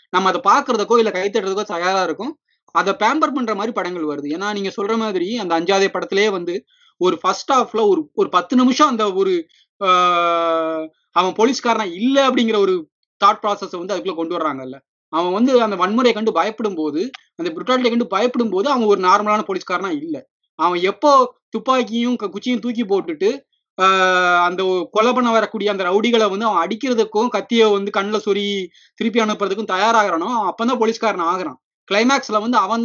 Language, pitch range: Tamil, 195-255 Hz